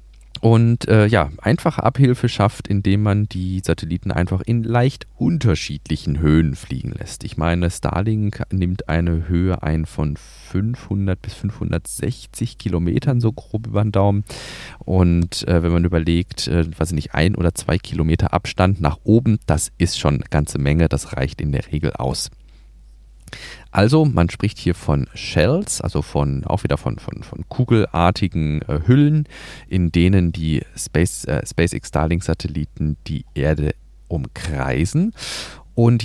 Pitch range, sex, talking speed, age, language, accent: 80-115 Hz, male, 140 wpm, 30-49, German, German